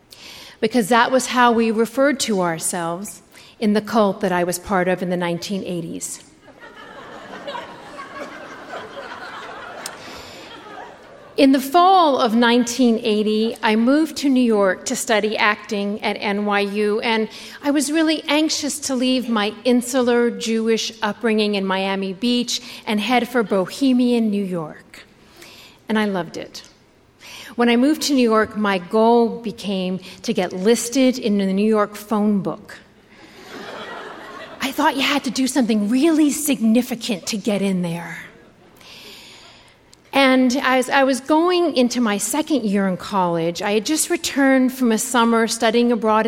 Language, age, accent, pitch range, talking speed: English, 50-69, American, 205-260 Hz, 140 wpm